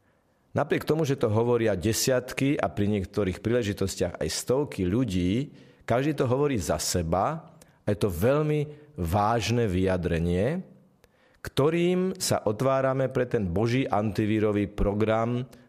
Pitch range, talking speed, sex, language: 105-140 Hz, 120 wpm, male, Slovak